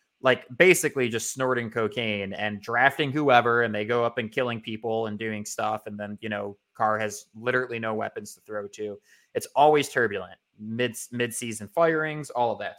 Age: 20-39